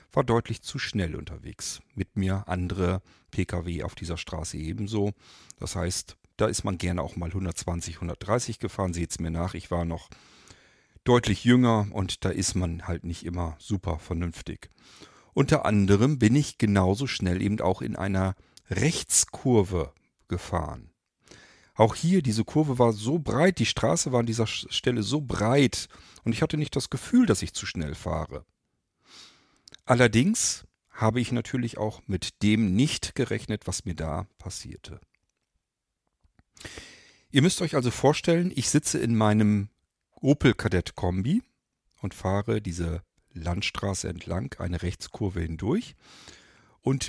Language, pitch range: German, 90-120 Hz